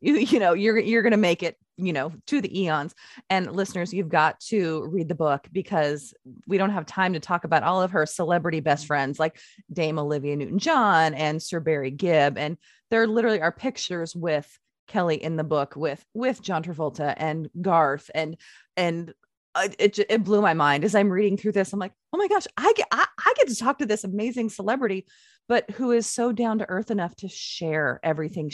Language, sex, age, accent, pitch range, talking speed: English, female, 30-49, American, 155-205 Hz, 210 wpm